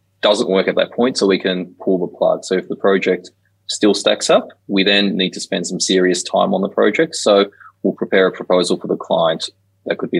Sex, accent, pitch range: male, Australian, 90-100 Hz